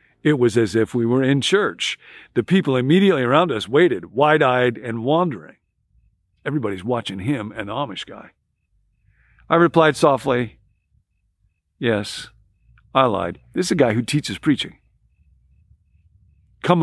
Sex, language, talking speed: male, English, 135 wpm